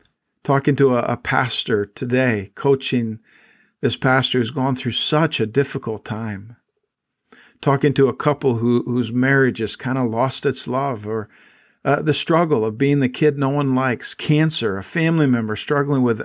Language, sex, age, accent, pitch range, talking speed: English, male, 50-69, American, 120-145 Hz, 170 wpm